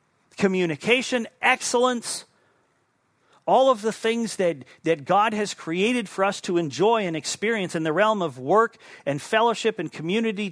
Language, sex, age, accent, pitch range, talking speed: English, male, 40-59, American, 160-220 Hz, 150 wpm